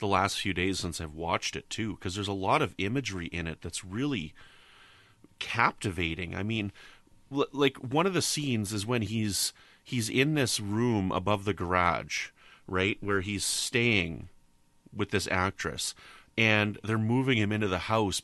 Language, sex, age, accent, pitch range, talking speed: English, male, 30-49, American, 95-125 Hz, 170 wpm